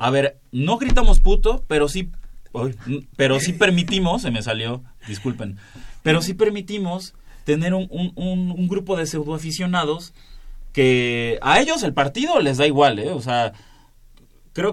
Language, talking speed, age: Spanish, 145 wpm, 30-49